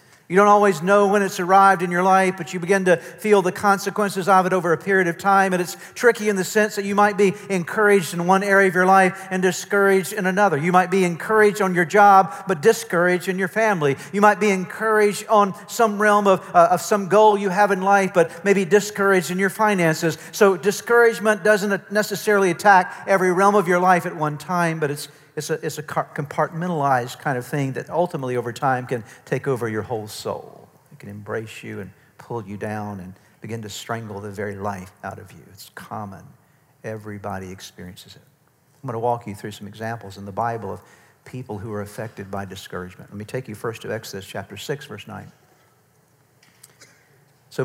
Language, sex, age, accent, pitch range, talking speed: English, male, 50-69, American, 125-195 Hz, 205 wpm